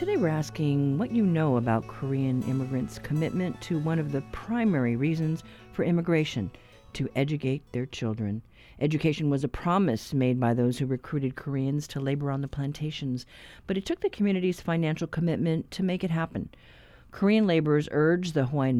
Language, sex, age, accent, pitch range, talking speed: English, female, 50-69, American, 130-170 Hz, 170 wpm